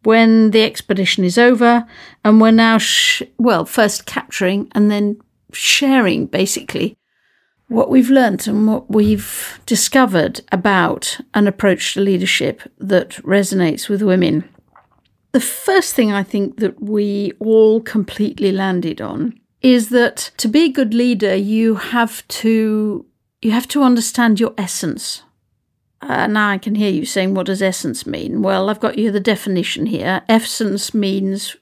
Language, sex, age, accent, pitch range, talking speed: English, female, 50-69, British, 200-245 Hz, 150 wpm